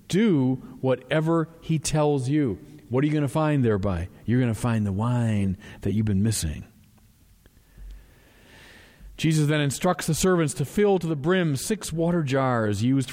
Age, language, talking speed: 40-59, English, 165 wpm